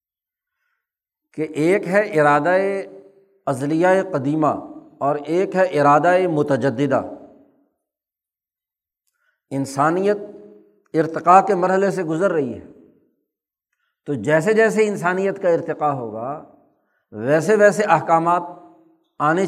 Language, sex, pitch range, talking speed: Urdu, male, 150-210 Hz, 90 wpm